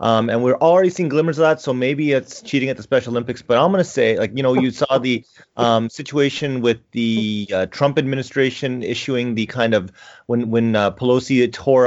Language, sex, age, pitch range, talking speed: English, male, 30-49, 100-125 Hz, 215 wpm